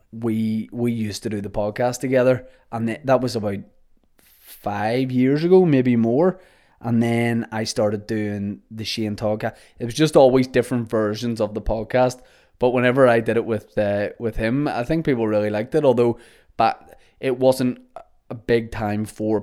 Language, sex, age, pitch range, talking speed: English, male, 20-39, 110-125 Hz, 175 wpm